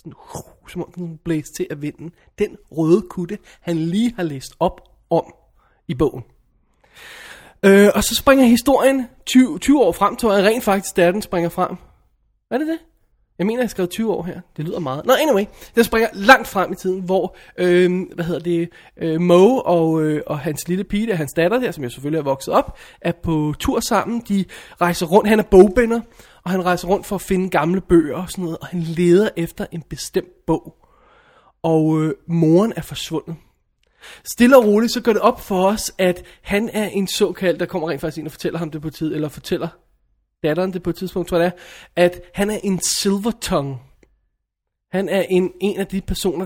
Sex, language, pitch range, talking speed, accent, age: male, Danish, 165-200 Hz, 210 wpm, native, 20-39